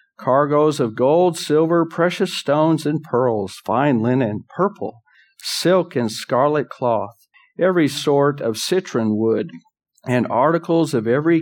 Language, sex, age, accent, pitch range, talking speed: English, male, 50-69, American, 115-160 Hz, 125 wpm